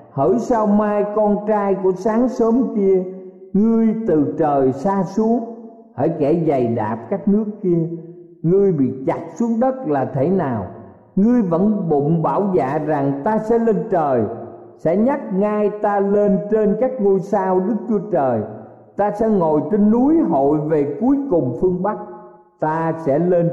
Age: 50-69